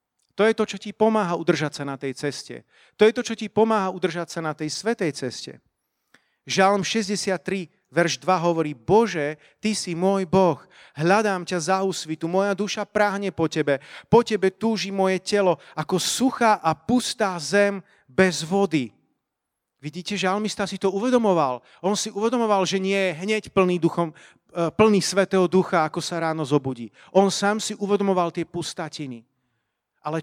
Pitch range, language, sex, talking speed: 165-215 Hz, Slovak, male, 165 wpm